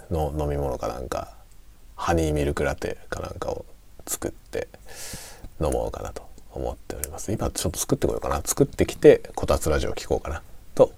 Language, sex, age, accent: Japanese, male, 40-59, native